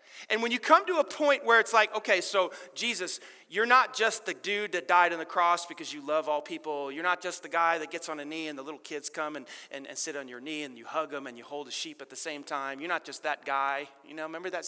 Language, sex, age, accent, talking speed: English, male, 30-49, American, 295 wpm